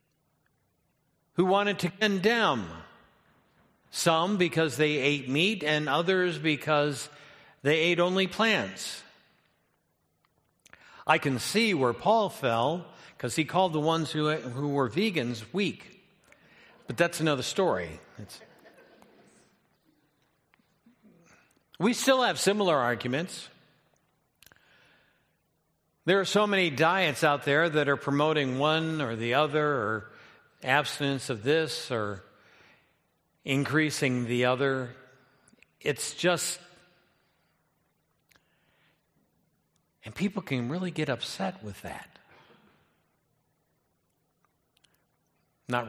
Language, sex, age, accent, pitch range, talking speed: English, male, 60-79, American, 130-170 Hz, 100 wpm